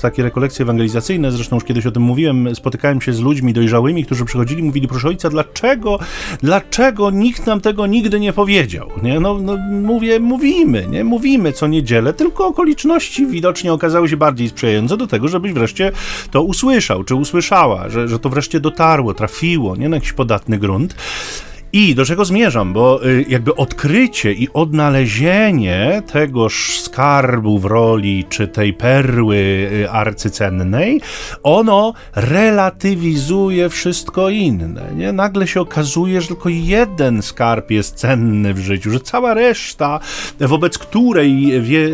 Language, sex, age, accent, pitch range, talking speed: Polish, male, 30-49, native, 120-195 Hz, 145 wpm